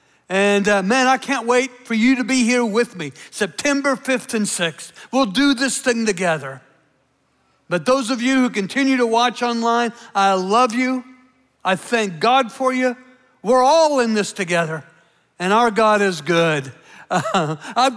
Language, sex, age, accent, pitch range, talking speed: English, male, 60-79, American, 225-290 Hz, 170 wpm